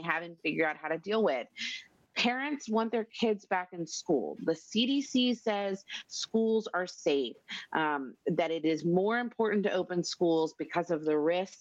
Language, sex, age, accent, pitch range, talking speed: English, female, 30-49, American, 175-230 Hz, 170 wpm